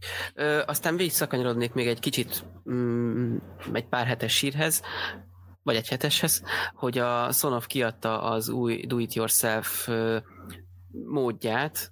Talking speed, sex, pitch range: 115 wpm, male, 105-120 Hz